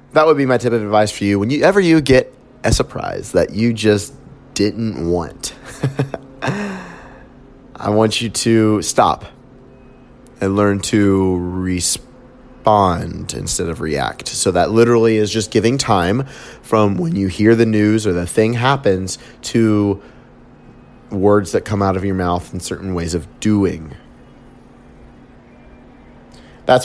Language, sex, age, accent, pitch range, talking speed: English, male, 30-49, American, 95-120 Hz, 140 wpm